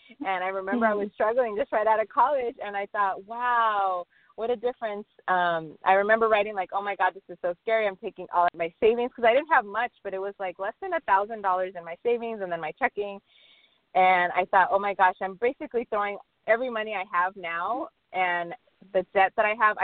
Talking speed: 230 wpm